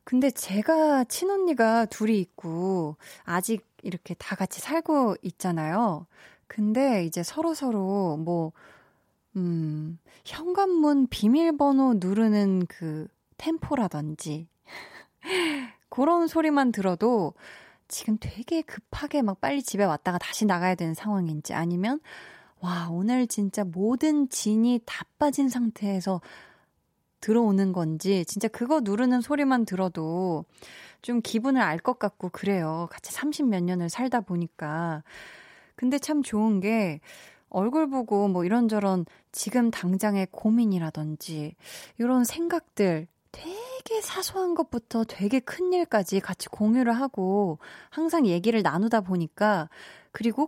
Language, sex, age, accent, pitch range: Korean, female, 20-39, native, 180-260 Hz